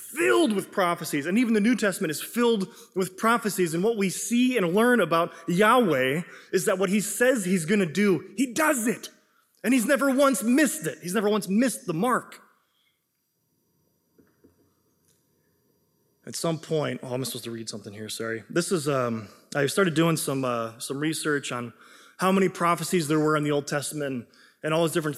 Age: 20-39